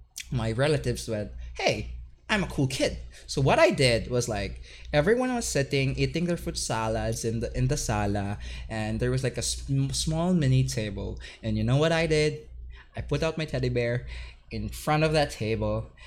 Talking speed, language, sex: 185 wpm, English, male